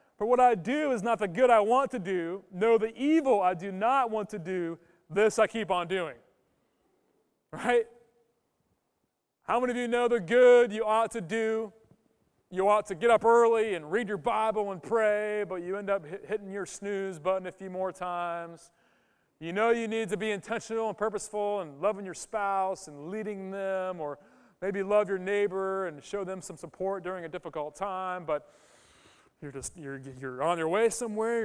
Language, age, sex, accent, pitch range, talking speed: English, 30-49, male, American, 160-220 Hz, 195 wpm